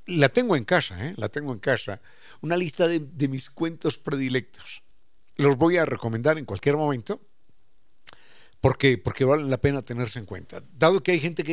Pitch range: 125-165 Hz